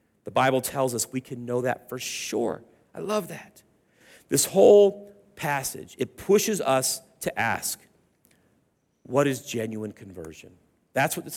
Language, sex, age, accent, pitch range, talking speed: English, male, 40-59, American, 125-185 Hz, 150 wpm